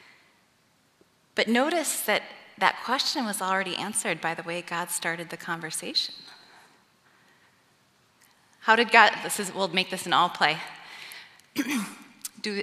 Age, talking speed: 20-39, 130 wpm